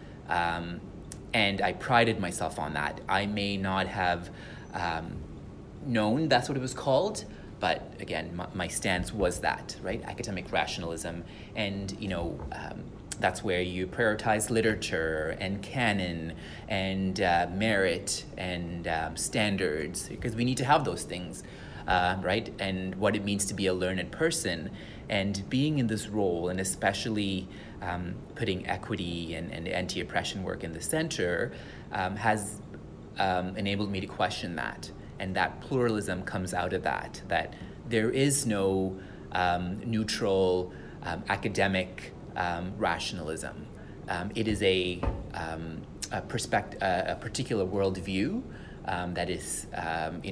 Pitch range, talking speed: 90-105 Hz, 145 wpm